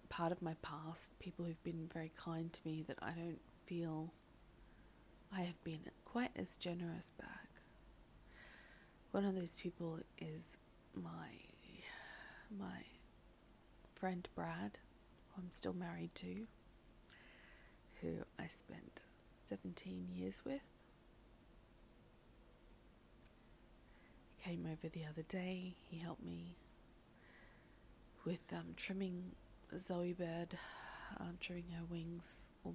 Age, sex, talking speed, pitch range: 30-49, female, 110 wpm, 155-185 Hz